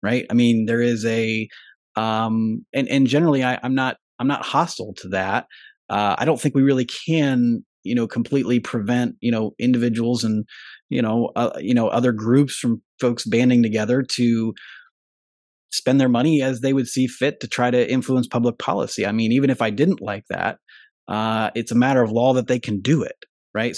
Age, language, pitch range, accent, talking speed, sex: 30-49, English, 110-130 Hz, American, 200 wpm, male